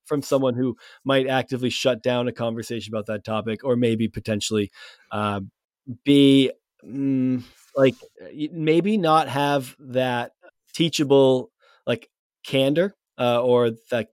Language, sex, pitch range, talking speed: English, male, 120-145 Hz, 125 wpm